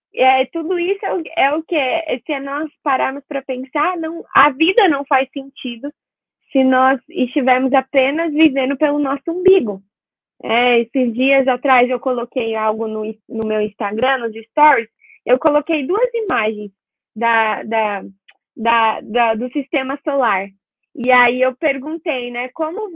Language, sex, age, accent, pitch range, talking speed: Portuguese, female, 20-39, Brazilian, 250-320 Hz, 155 wpm